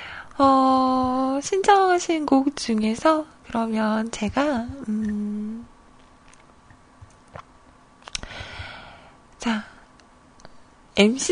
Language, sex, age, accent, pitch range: Korean, female, 20-39, native, 220-285 Hz